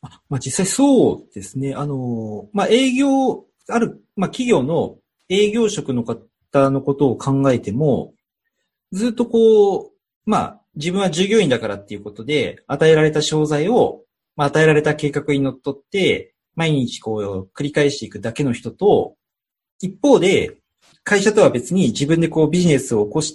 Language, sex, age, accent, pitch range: Japanese, male, 40-59, native, 120-195 Hz